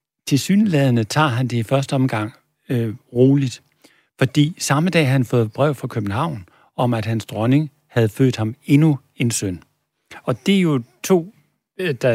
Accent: native